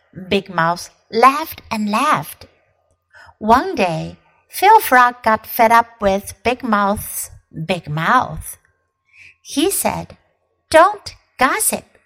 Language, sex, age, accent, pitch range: Chinese, female, 60-79, American, 200-300 Hz